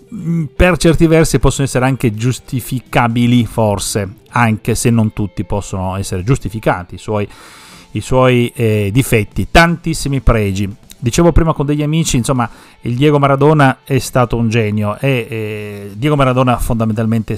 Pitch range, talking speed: 105-130 Hz, 140 wpm